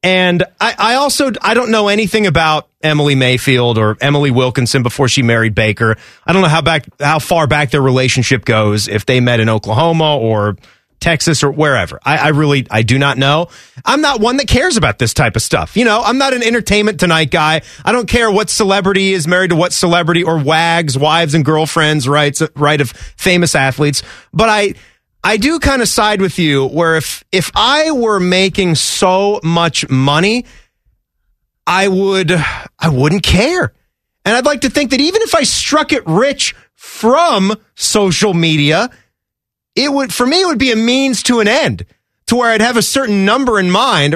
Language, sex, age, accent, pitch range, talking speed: English, male, 30-49, American, 145-215 Hz, 195 wpm